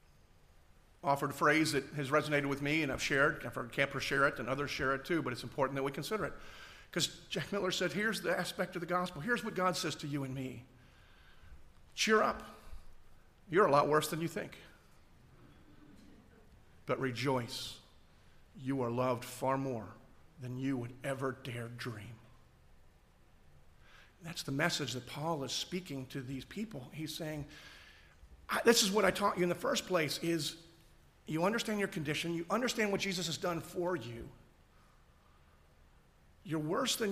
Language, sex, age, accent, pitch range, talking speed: English, male, 50-69, American, 115-170 Hz, 170 wpm